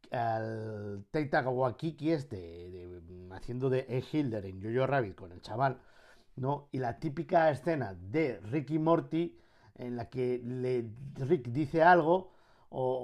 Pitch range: 110-150 Hz